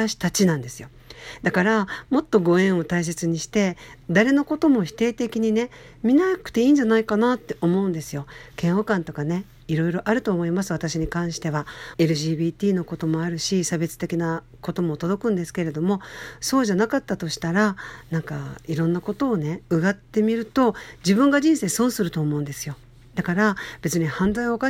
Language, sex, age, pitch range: Japanese, female, 50-69, 165-225 Hz